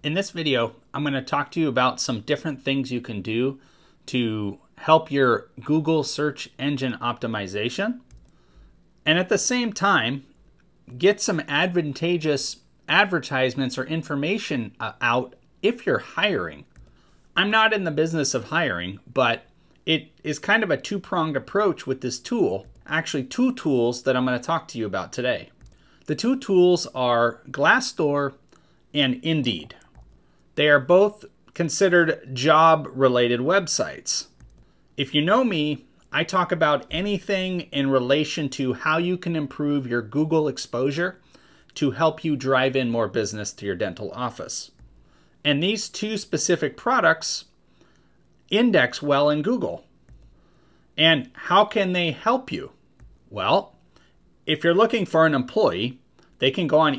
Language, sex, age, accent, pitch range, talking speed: English, male, 30-49, American, 125-170 Hz, 145 wpm